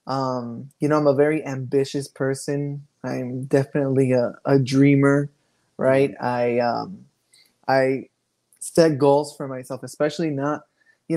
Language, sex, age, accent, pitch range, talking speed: English, male, 20-39, American, 130-145 Hz, 130 wpm